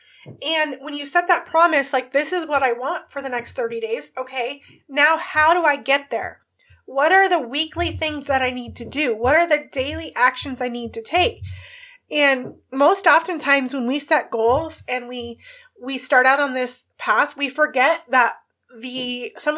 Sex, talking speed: female, 195 wpm